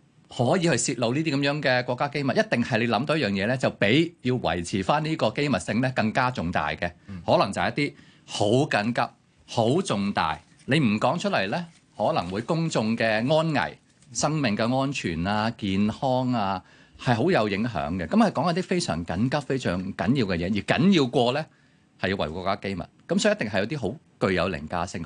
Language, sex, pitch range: Chinese, male, 95-135 Hz